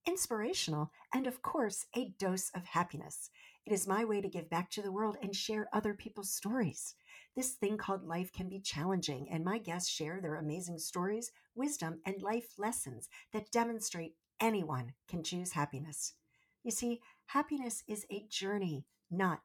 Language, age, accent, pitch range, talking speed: English, 50-69, American, 170-225 Hz, 165 wpm